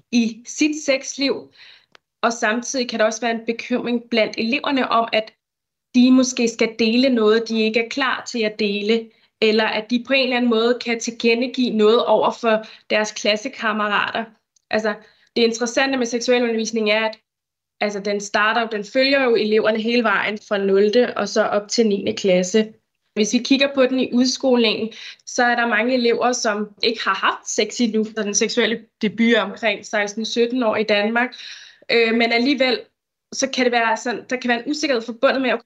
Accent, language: native, Danish